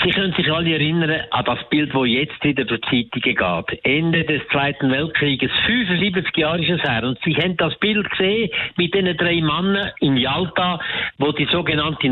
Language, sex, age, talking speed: German, male, 60-79, 195 wpm